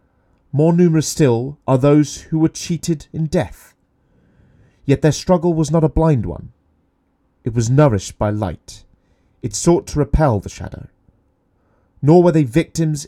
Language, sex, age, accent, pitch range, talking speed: English, male, 30-49, British, 105-145 Hz, 150 wpm